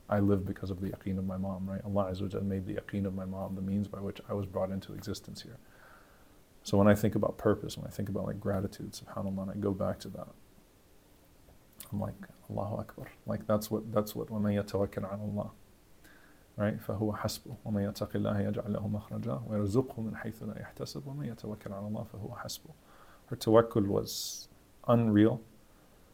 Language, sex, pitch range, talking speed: English, male, 100-110 Hz, 190 wpm